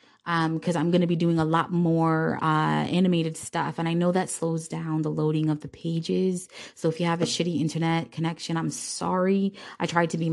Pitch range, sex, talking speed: 160-170 Hz, female, 220 wpm